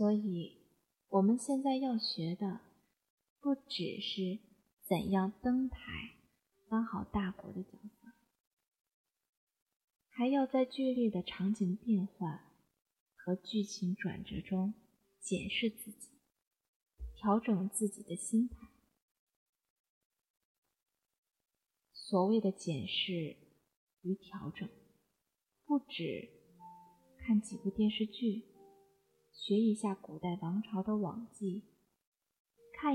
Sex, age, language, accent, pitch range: female, 30-49, Chinese, native, 190-235 Hz